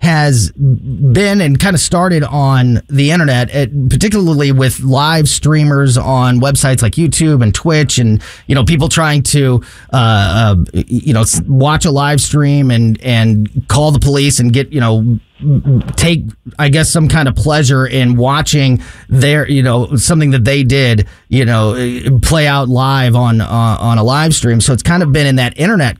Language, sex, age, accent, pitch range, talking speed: English, male, 30-49, American, 115-145 Hz, 180 wpm